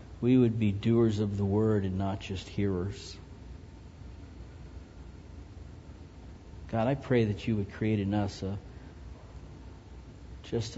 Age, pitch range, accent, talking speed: 50-69, 95-125 Hz, American, 120 wpm